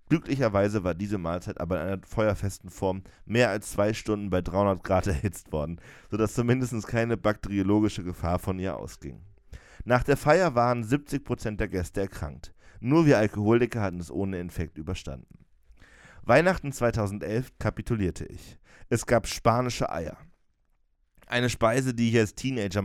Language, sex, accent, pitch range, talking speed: German, male, German, 95-120 Hz, 145 wpm